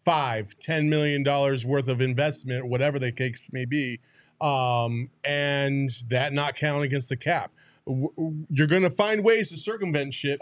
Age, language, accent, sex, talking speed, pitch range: 30-49, English, American, male, 160 wpm, 135-170 Hz